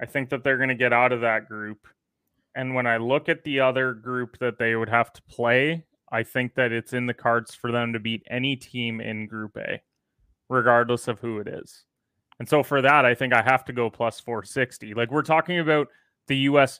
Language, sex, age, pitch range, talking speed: English, male, 20-39, 115-135 Hz, 230 wpm